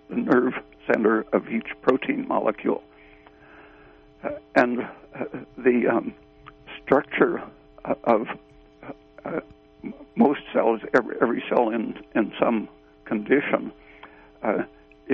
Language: English